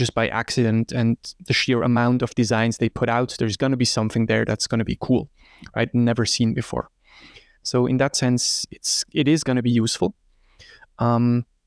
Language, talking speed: English, 185 wpm